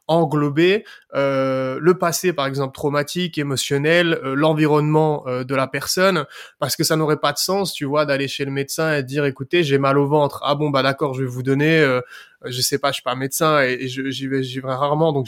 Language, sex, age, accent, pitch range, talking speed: French, male, 20-39, French, 135-160 Hz, 230 wpm